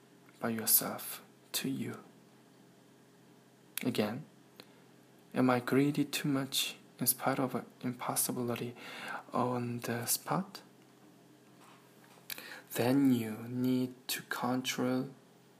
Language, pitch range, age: Korean, 115-135 Hz, 20-39